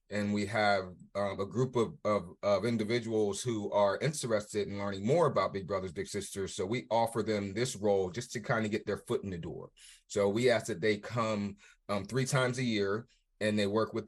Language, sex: English, male